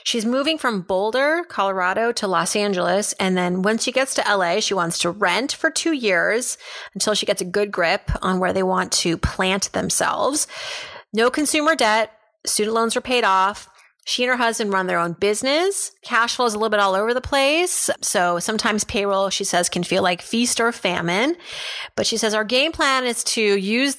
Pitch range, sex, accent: 190-245 Hz, female, American